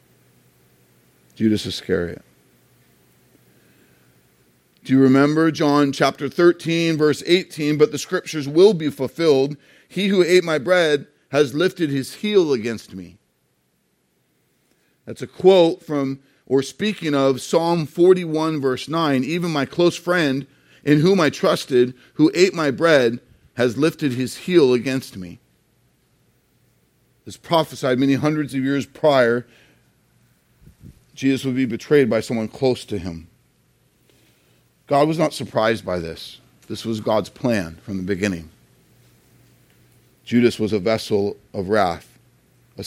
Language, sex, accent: English, male, American